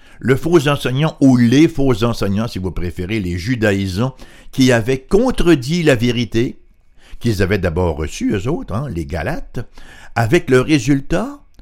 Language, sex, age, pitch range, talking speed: French, male, 60-79, 95-155 Hz, 150 wpm